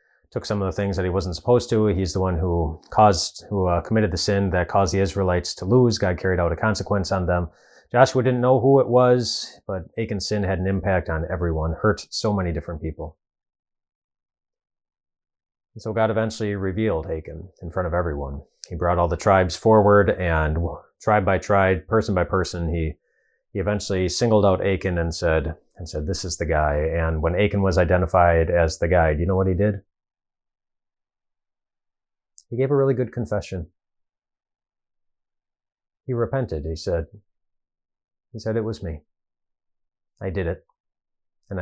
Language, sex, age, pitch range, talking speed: English, male, 30-49, 85-105 Hz, 175 wpm